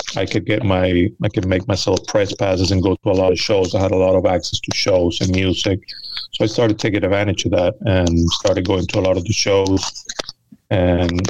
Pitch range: 95-105 Hz